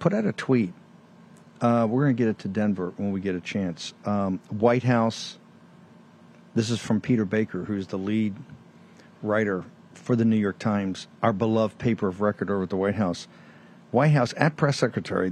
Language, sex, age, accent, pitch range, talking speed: English, male, 50-69, American, 110-150 Hz, 195 wpm